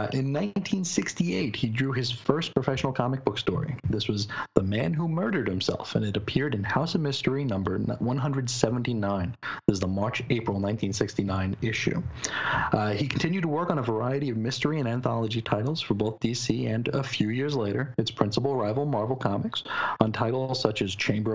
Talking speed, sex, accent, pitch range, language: 175 wpm, male, American, 110-140 Hz, English